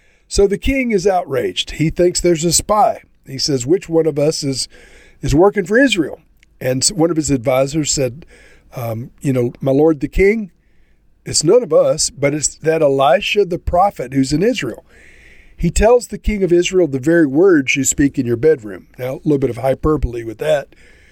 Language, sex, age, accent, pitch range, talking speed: English, male, 50-69, American, 135-180 Hz, 195 wpm